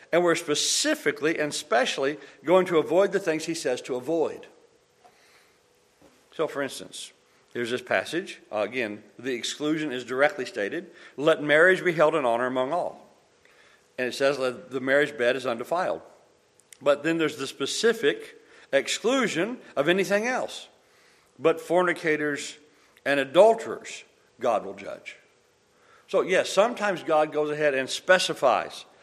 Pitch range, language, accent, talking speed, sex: 150-235 Hz, English, American, 140 wpm, male